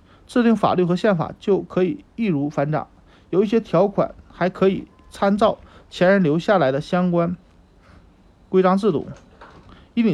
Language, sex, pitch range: Chinese, male, 145-205 Hz